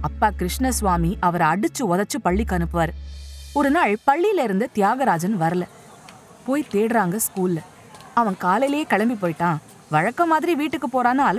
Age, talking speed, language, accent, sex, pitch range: 20-39, 120 wpm, Tamil, native, female, 165-255 Hz